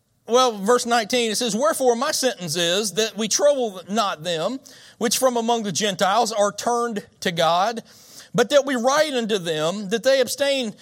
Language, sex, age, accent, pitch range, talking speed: English, male, 40-59, American, 220-285 Hz, 180 wpm